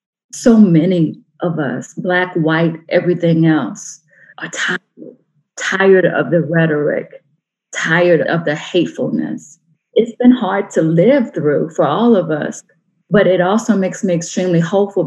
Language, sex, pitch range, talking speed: English, female, 165-195 Hz, 140 wpm